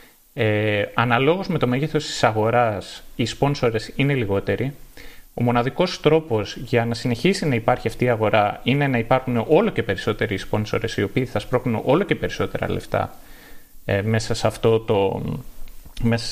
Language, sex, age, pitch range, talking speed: Greek, male, 30-49, 110-155 Hz, 160 wpm